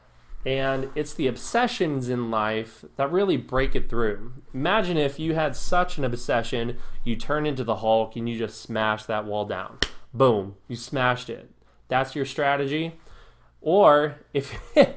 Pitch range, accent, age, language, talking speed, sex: 115-150 Hz, American, 20-39, English, 155 wpm, male